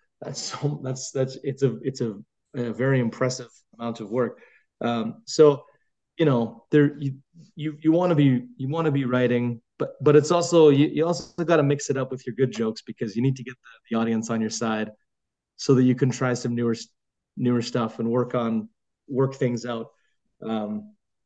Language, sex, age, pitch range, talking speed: English, male, 30-49, 115-145 Hz, 205 wpm